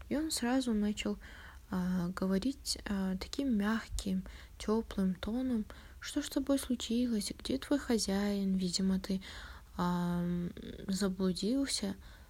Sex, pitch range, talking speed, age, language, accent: female, 180-225 Hz, 105 wpm, 20-39, Russian, native